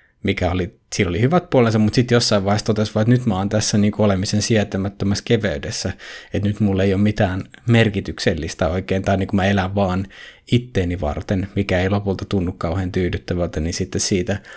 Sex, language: male, Finnish